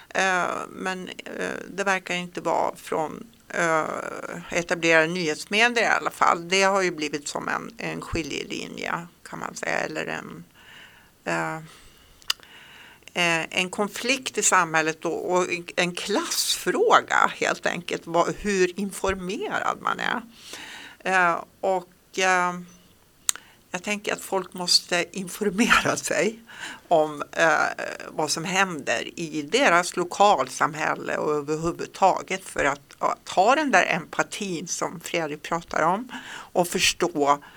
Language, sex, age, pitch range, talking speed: Swedish, female, 60-79, 165-195 Hz, 110 wpm